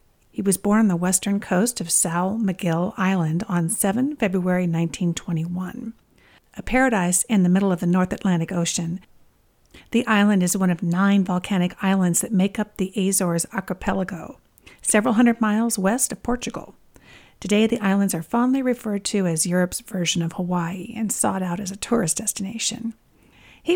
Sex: female